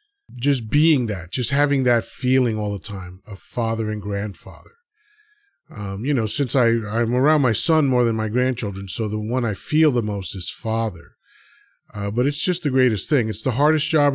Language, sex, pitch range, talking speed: English, male, 105-135 Hz, 200 wpm